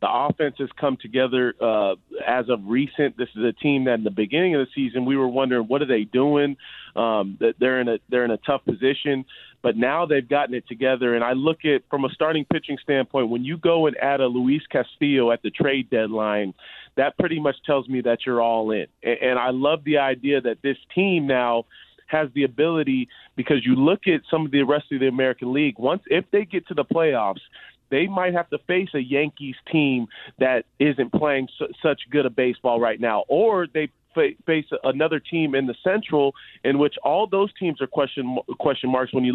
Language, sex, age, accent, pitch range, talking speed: English, male, 30-49, American, 130-160 Hz, 220 wpm